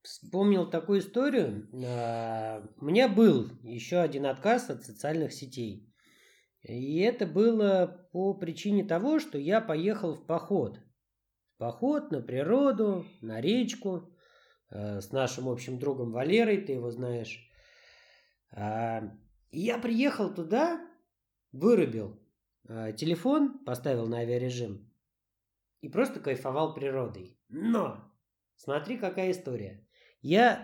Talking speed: 105 wpm